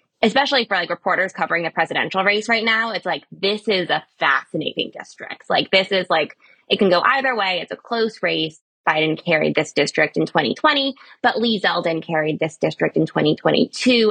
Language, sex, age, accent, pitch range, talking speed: English, female, 20-39, American, 160-210 Hz, 185 wpm